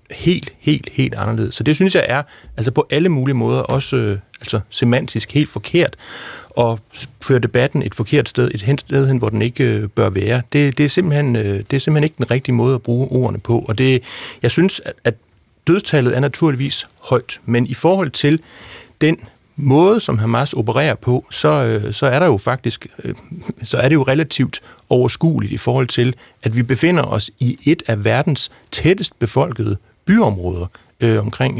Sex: male